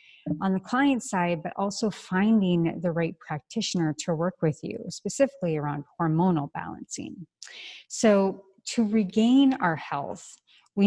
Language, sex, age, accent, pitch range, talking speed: English, female, 30-49, American, 155-200 Hz, 135 wpm